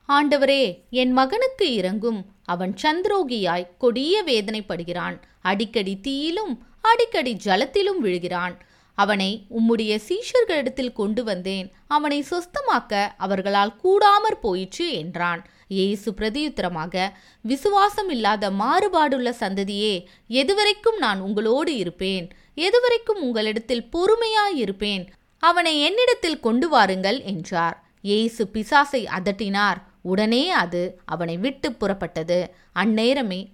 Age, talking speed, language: 20-39, 90 wpm, Tamil